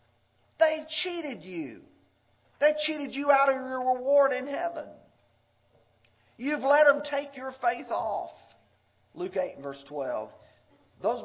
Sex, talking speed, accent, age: male, 135 wpm, American, 50-69